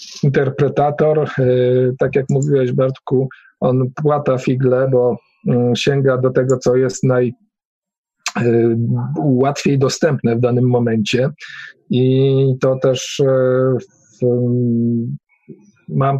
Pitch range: 125-155 Hz